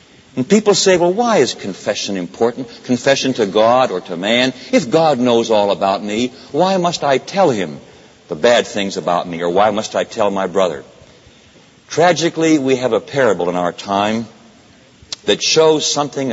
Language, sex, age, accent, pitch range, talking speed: English, male, 60-79, American, 105-160 Hz, 175 wpm